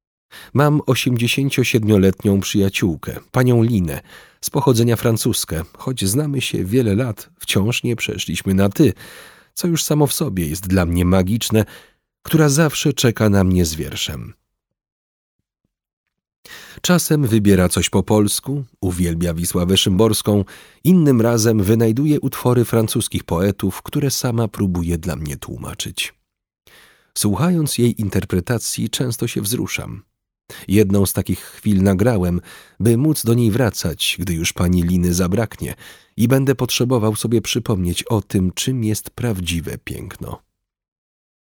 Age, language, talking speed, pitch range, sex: 40-59, Polish, 125 wpm, 95-125 Hz, male